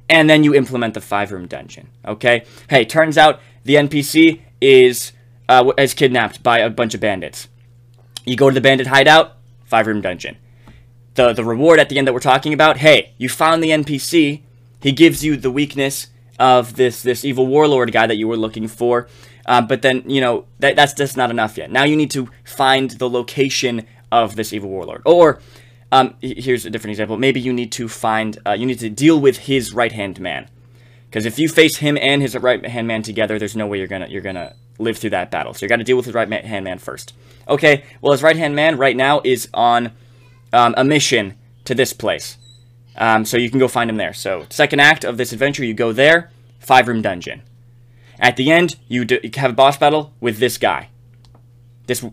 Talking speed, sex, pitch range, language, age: 210 wpm, male, 120-135 Hz, English, 20-39